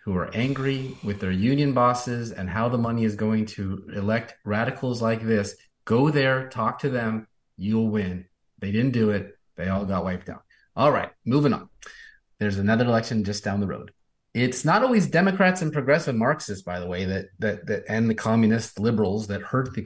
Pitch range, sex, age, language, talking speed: 100-130 Hz, male, 30-49, English, 195 wpm